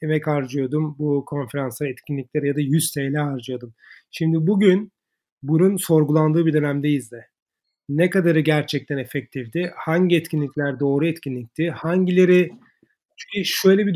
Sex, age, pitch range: male, 40-59, 145-170 Hz